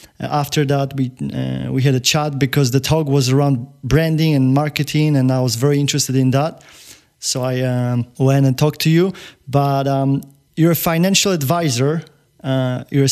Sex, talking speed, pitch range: male, 180 wpm, 135-160 Hz